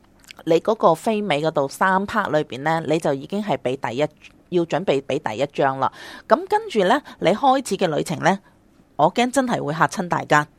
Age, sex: 30-49, female